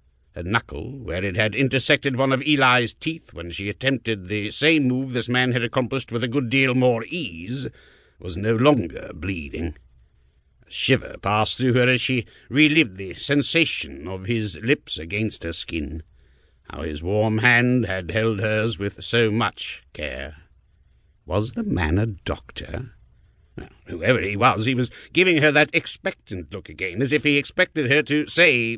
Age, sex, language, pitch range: 60-79, male, English, 95-145 Hz